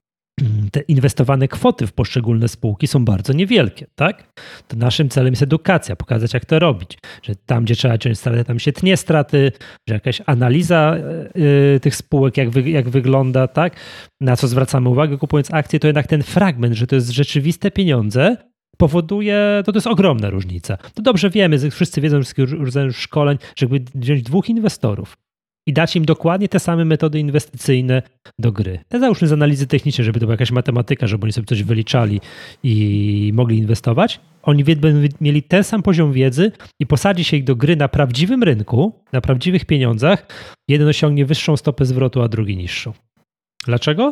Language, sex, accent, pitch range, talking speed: Polish, male, native, 115-155 Hz, 175 wpm